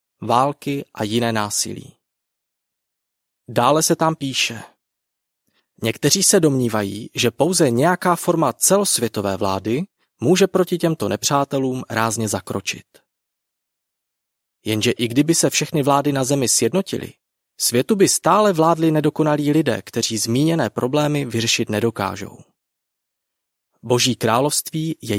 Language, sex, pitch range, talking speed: Czech, male, 115-160 Hz, 110 wpm